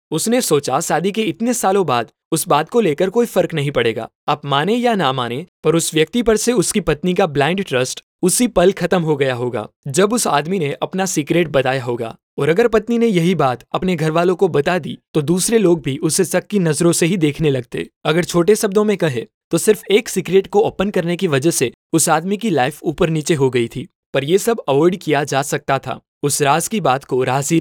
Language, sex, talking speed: Hindi, male, 230 wpm